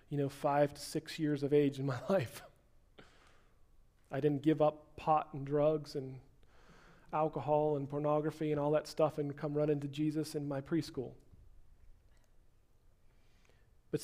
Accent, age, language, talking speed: American, 40-59, English, 150 wpm